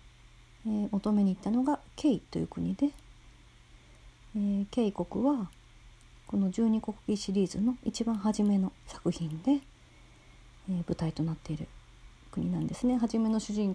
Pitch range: 170-230 Hz